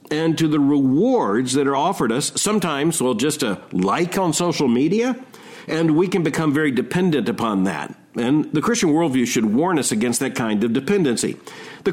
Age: 50-69